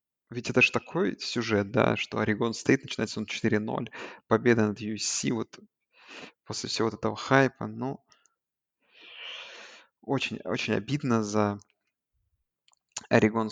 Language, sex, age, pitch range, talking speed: Russian, male, 20-39, 110-130 Hz, 120 wpm